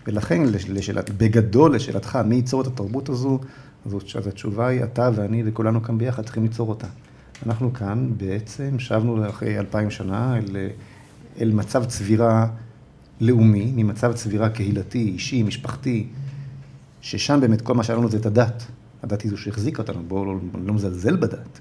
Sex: male